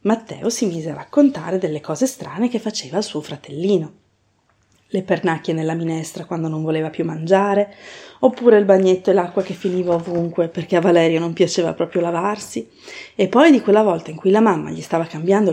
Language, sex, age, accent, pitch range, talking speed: Italian, female, 30-49, native, 170-210 Hz, 190 wpm